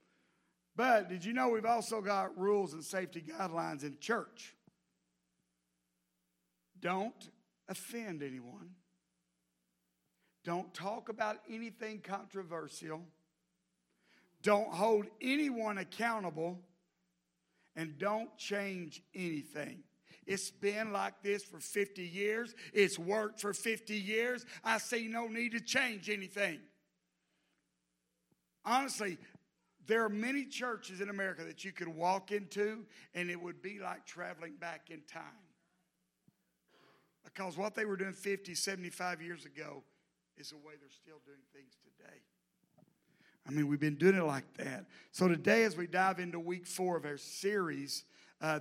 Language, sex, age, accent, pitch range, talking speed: English, male, 50-69, American, 155-210 Hz, 130 wpm